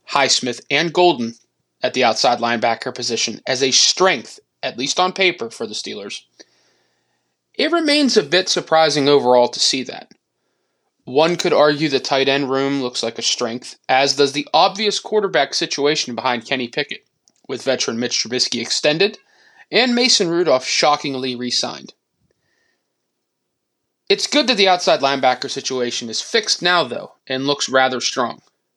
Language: English